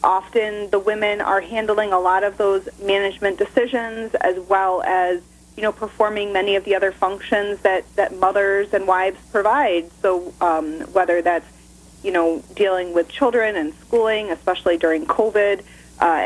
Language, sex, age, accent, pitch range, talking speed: English, female, 30-49, American, 180-235 Hz, 160 wpm